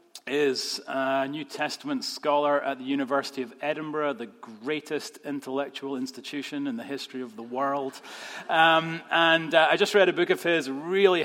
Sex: male